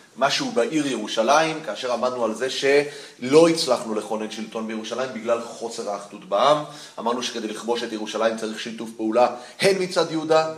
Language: Hebrew